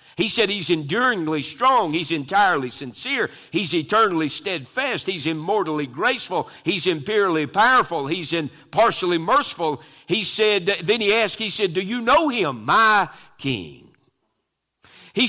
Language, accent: English, American